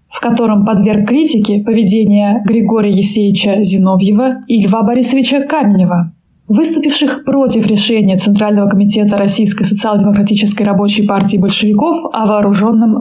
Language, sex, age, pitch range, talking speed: Russian, female, 20-39, 205-240 Hz, 110 wpm